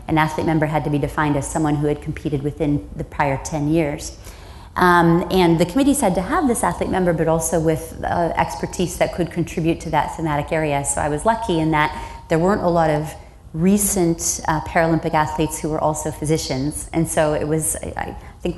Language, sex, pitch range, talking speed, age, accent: English, female, 155-180 Hz, 205 wpm, 30-49, American